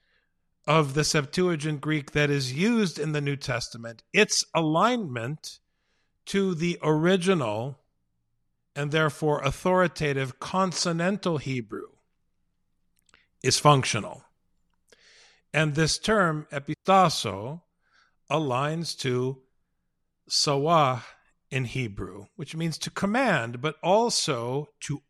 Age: 50-69